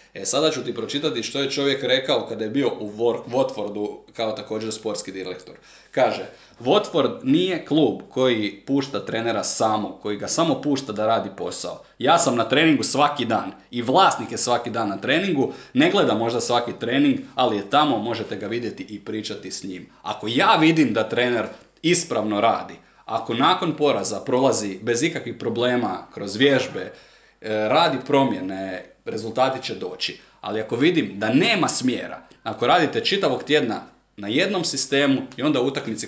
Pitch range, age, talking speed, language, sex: 100-135 Hz, 30-49, 165 wpm, Croatian, male